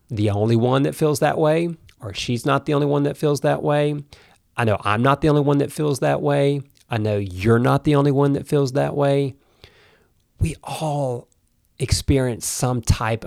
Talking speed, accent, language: 200 wpm, American, English